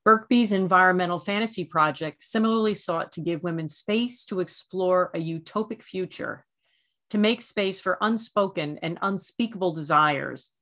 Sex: female